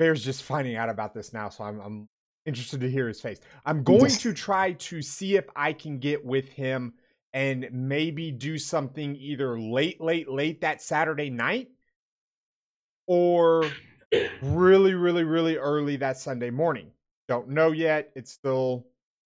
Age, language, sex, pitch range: 30-49, English, male, 125-160 Hz